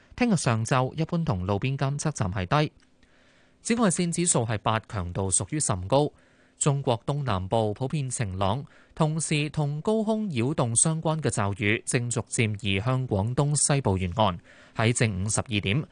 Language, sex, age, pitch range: Chinese, male, 20-39, 110-155 Hz